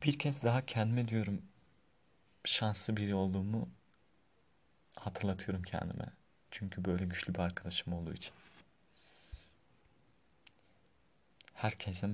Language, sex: Turkish, male